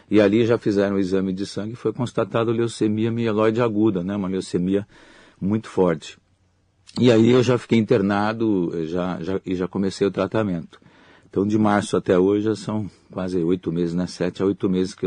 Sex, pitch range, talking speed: male, 90-105 Hz, 190 wpm